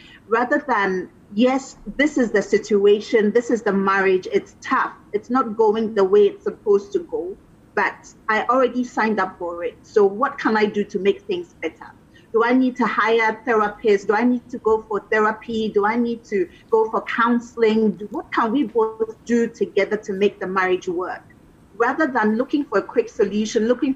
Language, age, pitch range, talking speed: English, 30-49, 205-260 Hz, 195 wpm